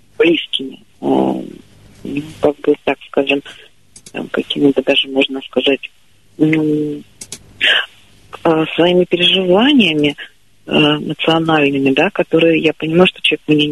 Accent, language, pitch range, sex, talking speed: native, Russian, 145-175 Hz, female, 85 wpm